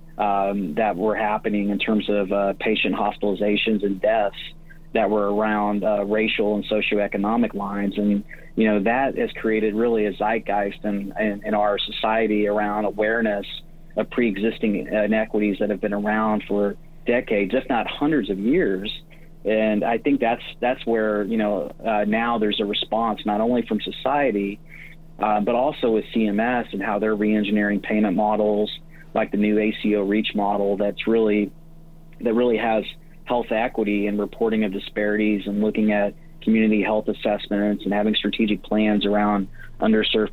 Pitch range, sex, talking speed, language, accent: 105-115 Hz, male, 160 wpm, English, American